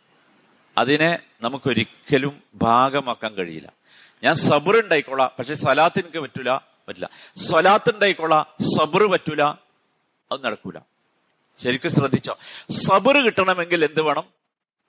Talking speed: 95 wpm